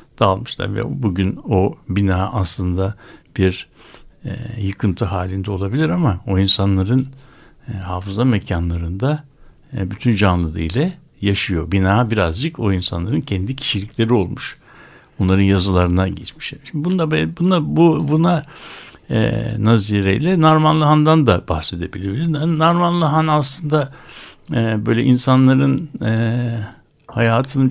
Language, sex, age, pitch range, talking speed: Turkish, male, 60-79, 95-135 Hz, 115 wpm